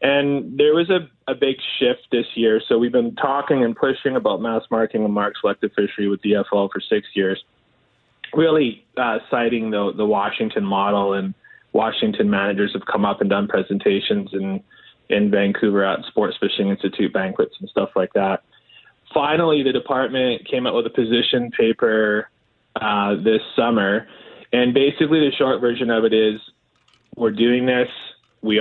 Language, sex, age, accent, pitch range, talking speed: English, male, 20-39, American, 100-115 Hz, 165 wpm